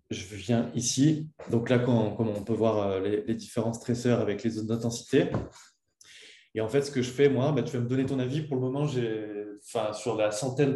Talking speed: 220 wpm